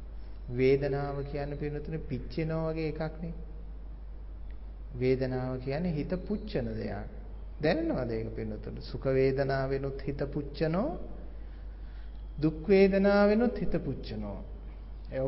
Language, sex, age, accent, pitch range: English, male, 30-49, Indian, 115-145 Hz